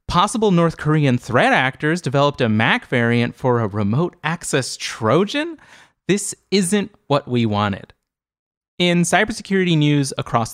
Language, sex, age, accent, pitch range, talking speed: English, male, 30-49, American, 115-175 Hz, 125 wpm